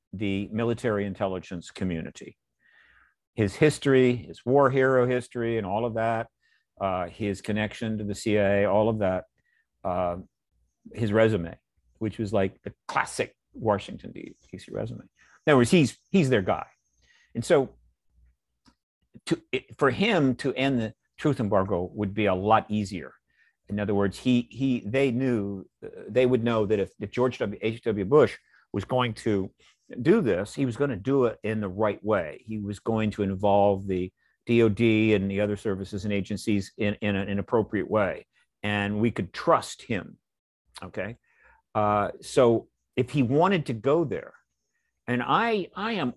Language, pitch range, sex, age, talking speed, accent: Swedish, 95-120 Hz, male, 50-69, 165 wpm, American